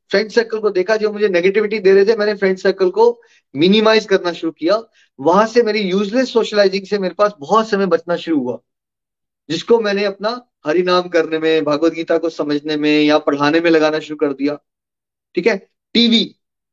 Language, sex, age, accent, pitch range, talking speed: Hindi, male, 30-49, native, 165-225 Hz, 80 wpm